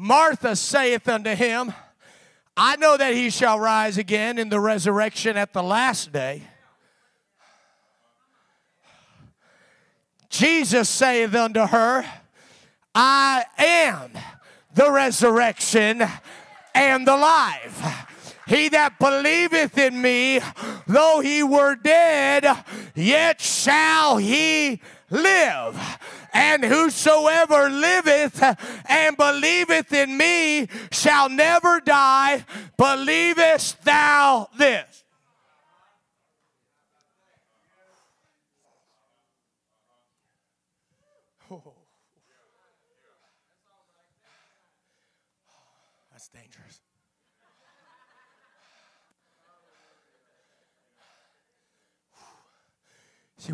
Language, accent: English, American